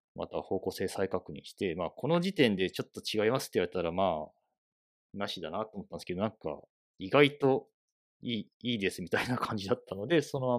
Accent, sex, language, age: native, male, Japanese, 40-59